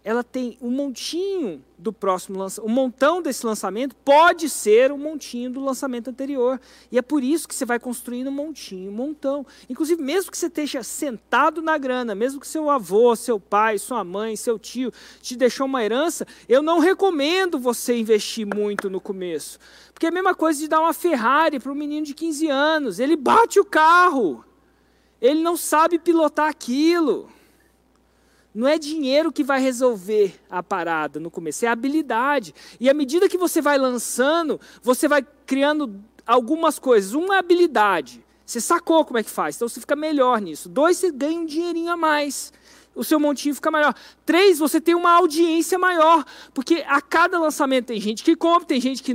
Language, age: Portuguese, 40-59